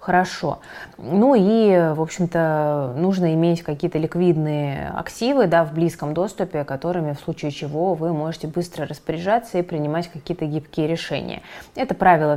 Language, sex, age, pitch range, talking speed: Russian, female, 20-39, 160-200 Hz, 130 wpm